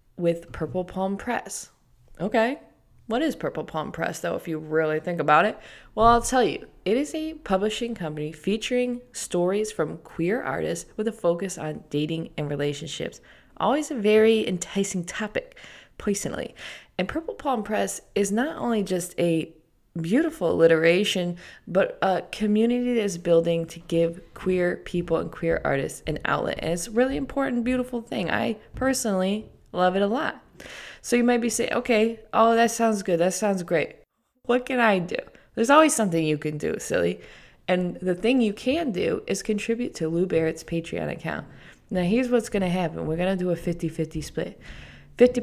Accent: American